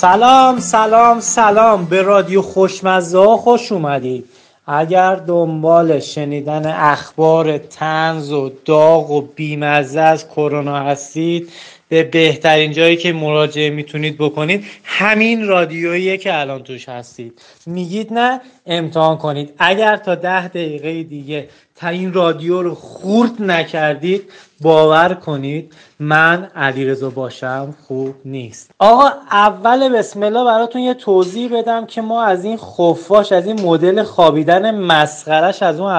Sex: male